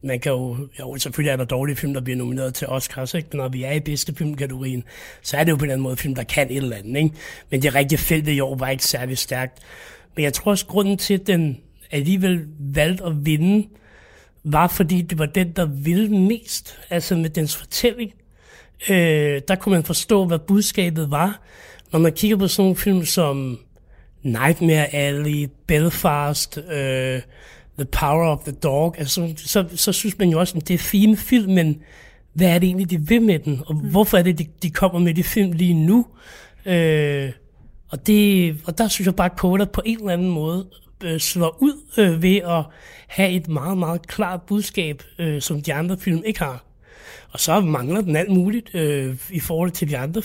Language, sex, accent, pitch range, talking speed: Danish, male, native, 145-185 Hz, 205 wpm